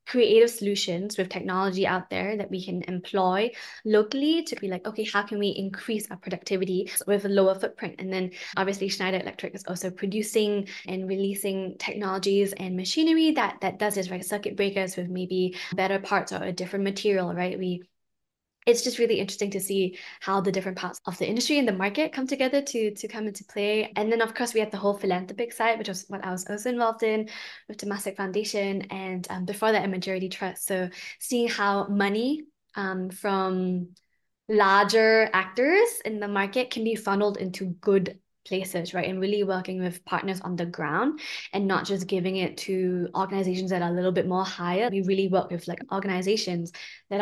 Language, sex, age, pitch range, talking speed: English, female, 10-29, 185-210 Hz, 195 wpm